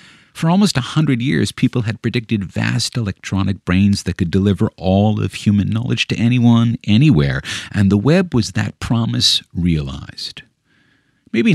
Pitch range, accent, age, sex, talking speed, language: 90-120 Hz, American, 50-69, male, 150 wpm, English